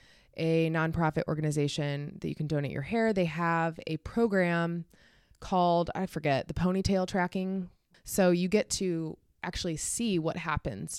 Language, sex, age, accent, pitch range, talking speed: English, female, 20-39, American, 150-180 Hz, 145 wpm